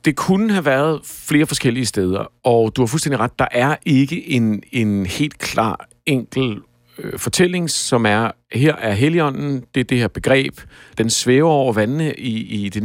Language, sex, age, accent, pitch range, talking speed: Danish, male, 50-69, native, 110-145 Hz, 180 wpm